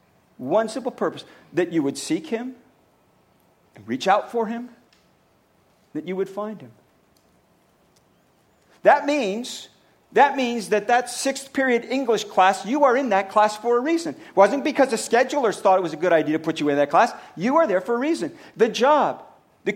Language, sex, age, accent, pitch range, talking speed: English, male, 50-69, American, 210-280 Hz, 190 wpm